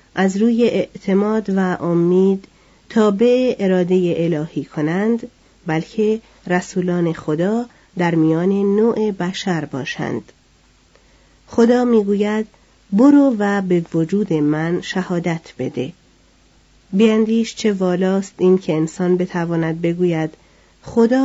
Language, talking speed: Persian, 100 wpm